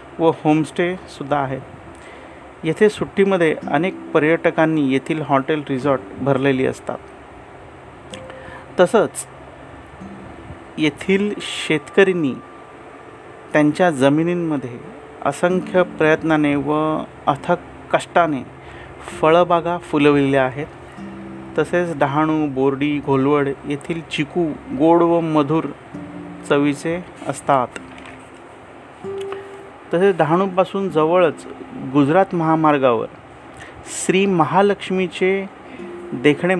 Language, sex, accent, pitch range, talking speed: Marathi, male, native, 145-180 Hz, 70 wpm